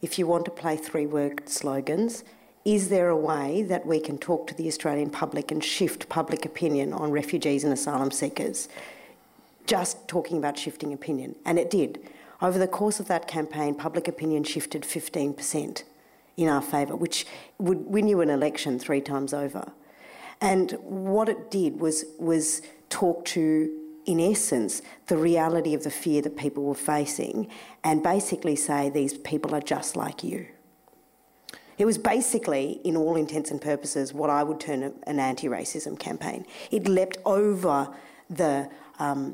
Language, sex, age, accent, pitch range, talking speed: English, female, 50-69, Australian, 145-175 Hz, 165 wpm